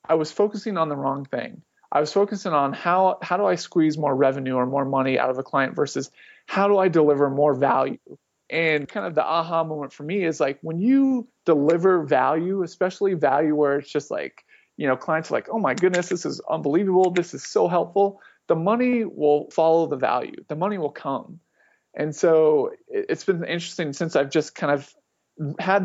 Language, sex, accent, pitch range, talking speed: English, male, American, 145-180 Hz, 205 wpm